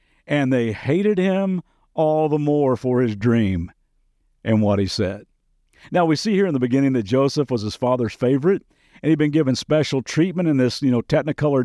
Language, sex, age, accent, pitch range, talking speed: English, male, 50-69, American, 125-170 Hz, 195 wpm